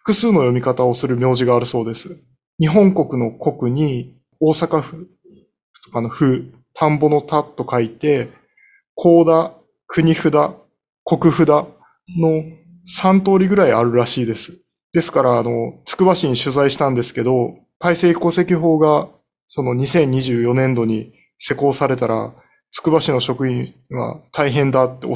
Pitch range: 125-170 Hz